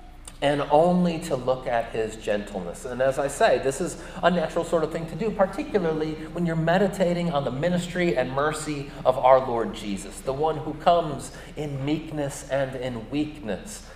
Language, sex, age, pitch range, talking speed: English, male, 30-49, 130-170 Hz, 180 wpm